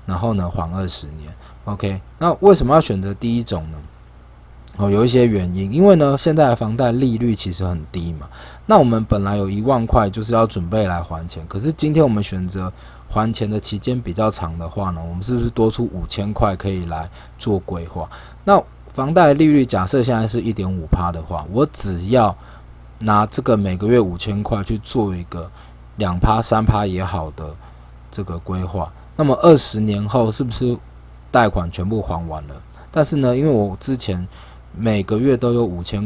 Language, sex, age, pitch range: Chinese, male, 20-39, 85-115 Hz